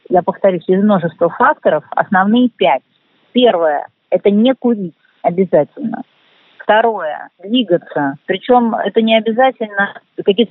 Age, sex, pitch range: 40-59, female, 185-235 Hz